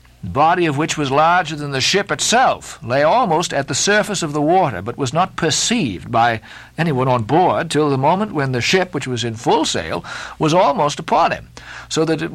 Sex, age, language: male, 60-79, English